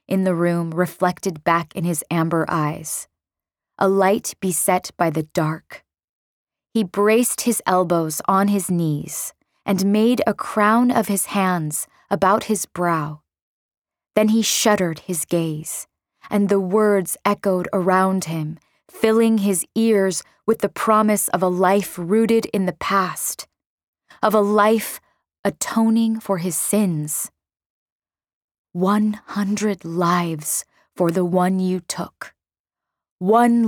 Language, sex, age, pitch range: English, female, 20-39, 175-210 Hz